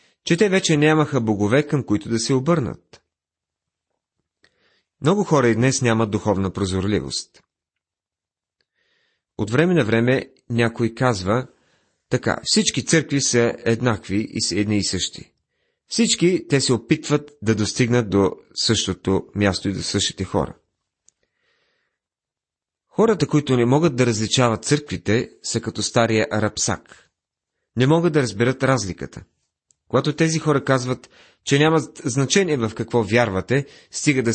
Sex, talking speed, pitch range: male, 130 wpm, 105-145 Hz